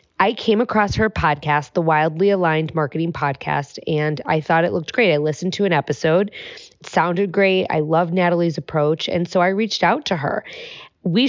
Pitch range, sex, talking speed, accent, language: 155-195 Hz, female, 190 wpm, American, English